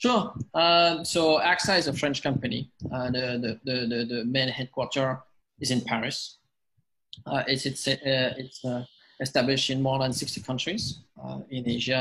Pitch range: 120-135 Hz